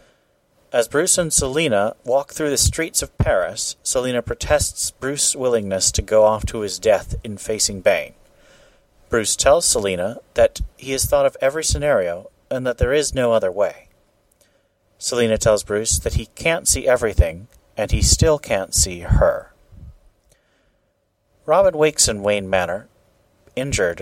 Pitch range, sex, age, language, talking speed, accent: 100-130 Hz, male, 40-59, English, 150 wpm, American